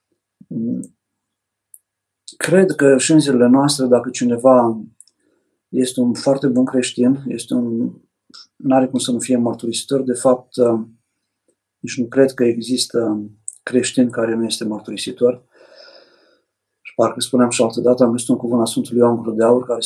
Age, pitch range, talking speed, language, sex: 50-69, 115-130 Hz, 135 wpm, Romanian, male